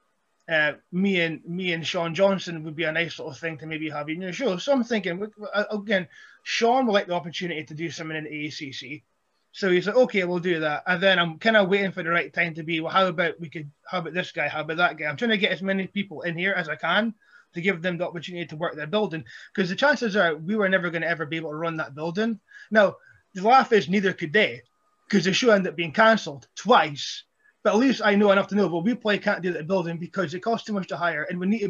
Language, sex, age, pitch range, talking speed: English, male, 20-39, 165-210 Hz, 275 wpm